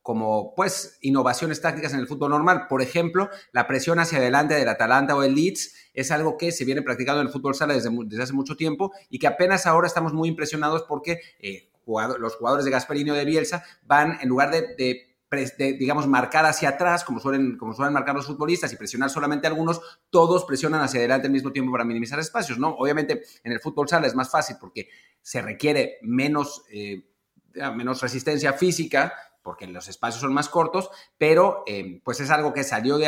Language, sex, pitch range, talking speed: Spanish, male, 125-160 Hz, 205 wpm